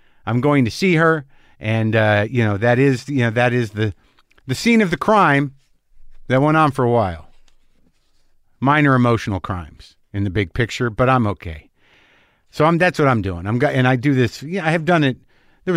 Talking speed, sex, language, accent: 205 wpm, male, English, American